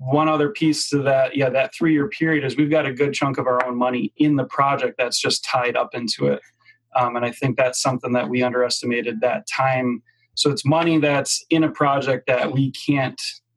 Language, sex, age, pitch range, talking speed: English, male, 30-49, 125-150 Hz, 220 wpm